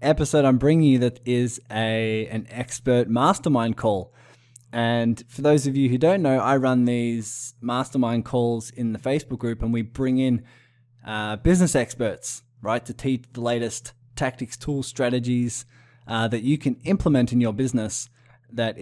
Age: 20-39